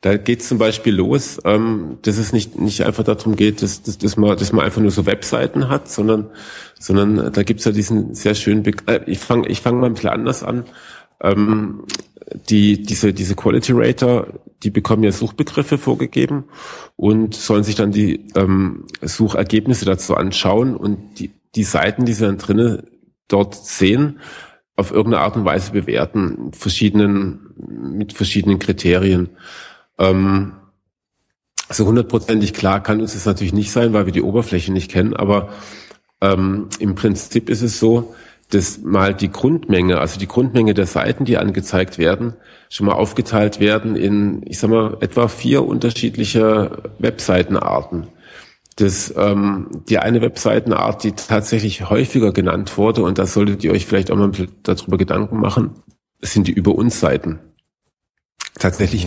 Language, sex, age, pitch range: German, male, 40-59, 100-110 Hz